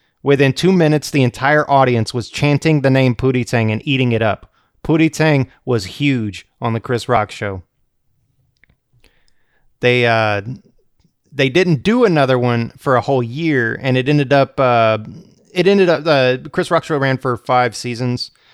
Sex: male